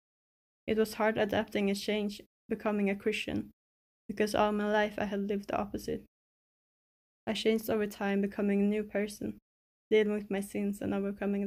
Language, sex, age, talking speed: English, female, 10-29, 165 wpm